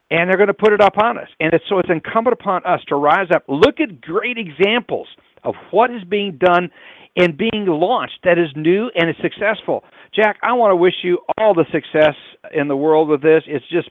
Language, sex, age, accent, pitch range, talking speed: English, male, 50-69, American, 145-195 Hz, 230 wpm